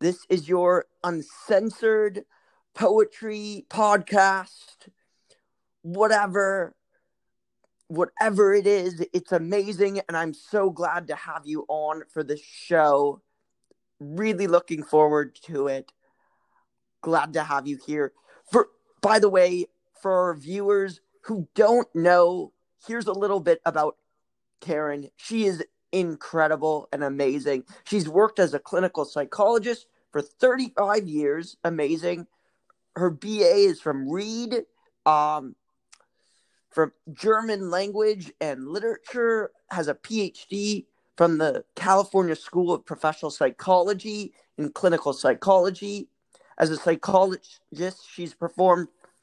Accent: American